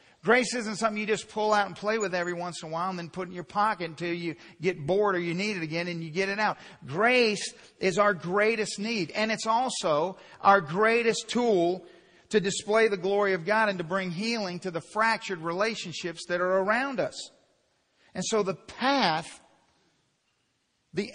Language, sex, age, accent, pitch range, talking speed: English, male, 50-69, American, 150-205 Hz, 195 wpm